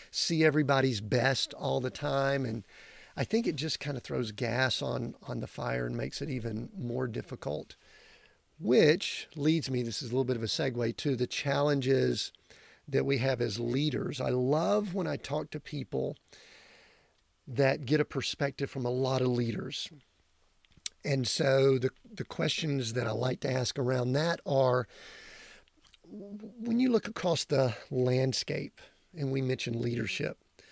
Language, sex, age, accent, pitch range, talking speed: English, male, 40-59, American, 125-155 Hz, 160 wpm